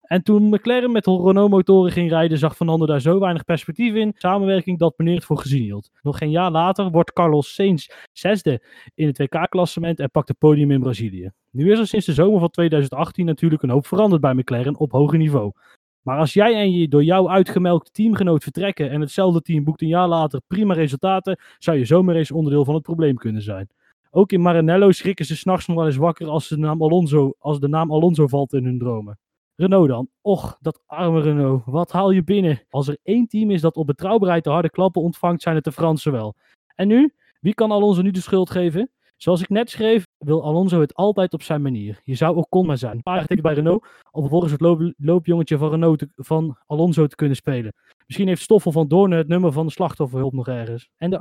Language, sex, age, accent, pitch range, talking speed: Dutch, male, 20-39, Dutch, 150-185 Hz, 220 wpm